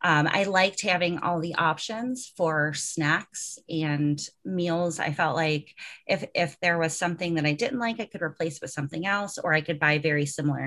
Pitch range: 155-205 Hz